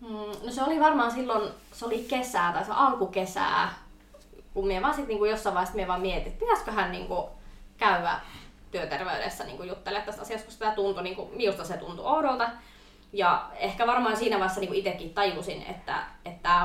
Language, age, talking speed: Finnish, 20-39, 155 wpm